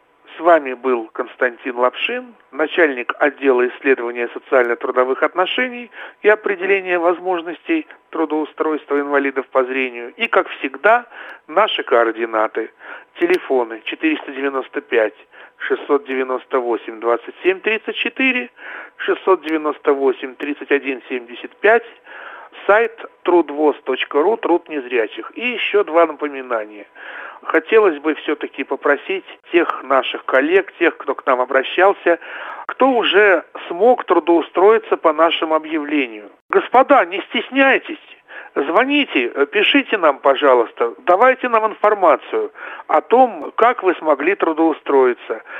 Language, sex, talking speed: Russian, male, 90 wpm